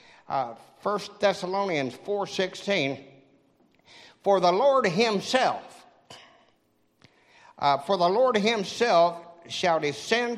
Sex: male